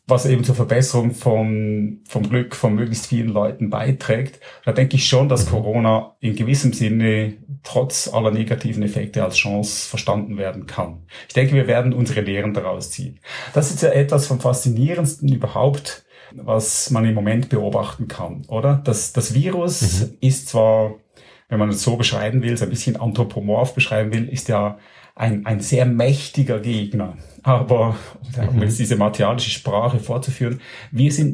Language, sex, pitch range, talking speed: German, male, 110-135 Hz, 165 wpm